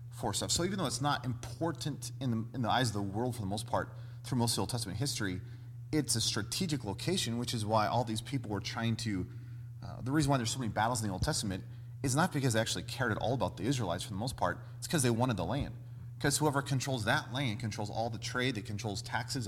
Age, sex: 30-49, male